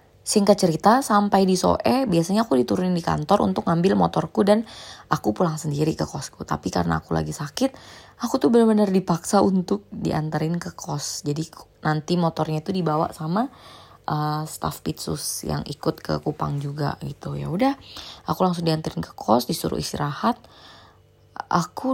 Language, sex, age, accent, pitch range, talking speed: Indonesian, female, 20-39, native, 110-185 Hz, 155 wpm